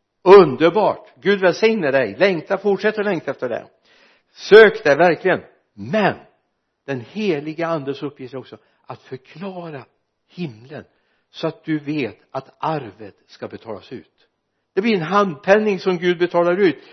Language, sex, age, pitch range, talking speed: Swedish, male, 60-79, 135-180 Hz, 140 wpm